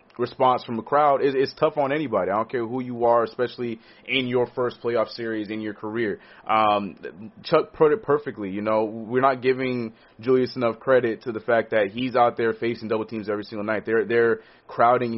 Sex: male